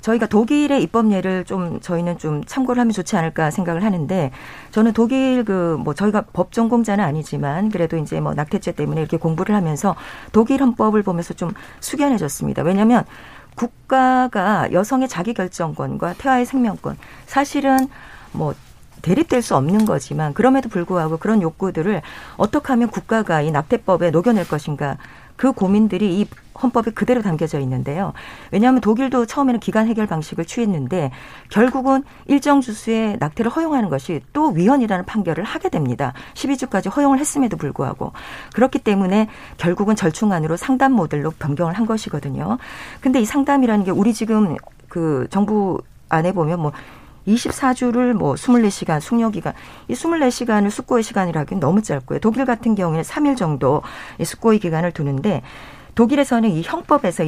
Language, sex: Korean, female